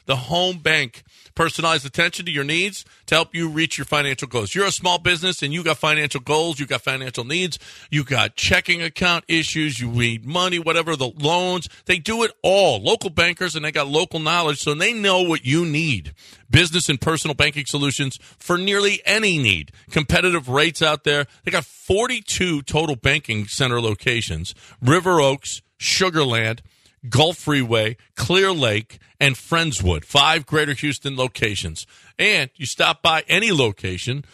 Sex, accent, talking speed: male, American, 170 wpm